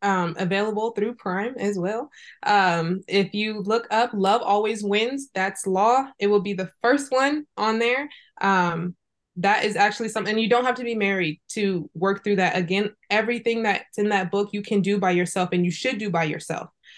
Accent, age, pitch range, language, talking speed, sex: American, 20-39, 190-225 Hz, English, 200 wpm, female